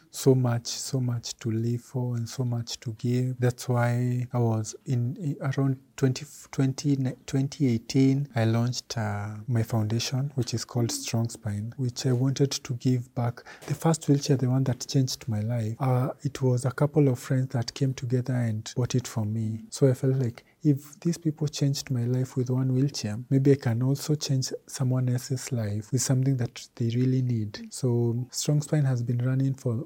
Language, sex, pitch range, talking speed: English, male, 120-140 Hz, 195 wpm